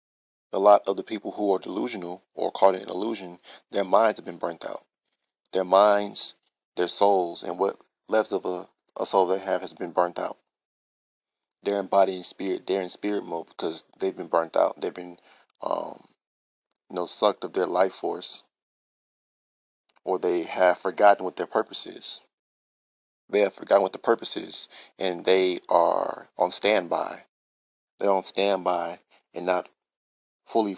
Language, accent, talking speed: English, American, 170 wpm